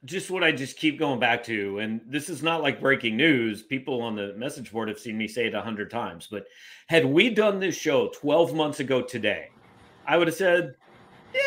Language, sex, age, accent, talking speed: English, male, 40-59, American, 225 wpm